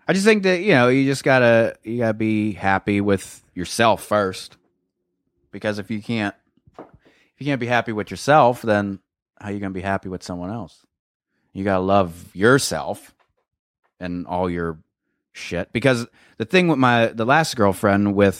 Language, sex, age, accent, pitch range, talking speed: English, male, 30-49, American, 85-110 Hz, 175 wpm